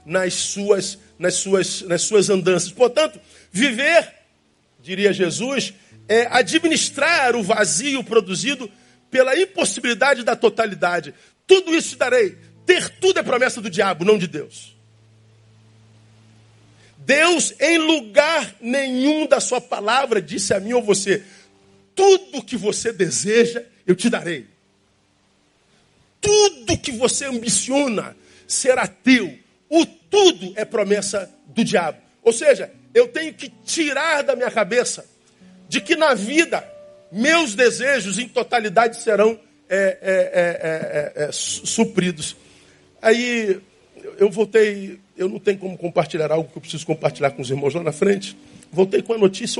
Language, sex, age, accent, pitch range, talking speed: Portuguese, male, 50-69, Brazilian, 155-250 Hz, 130 wpm